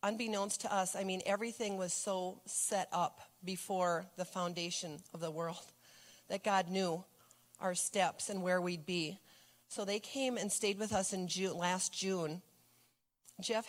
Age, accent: 40-59, American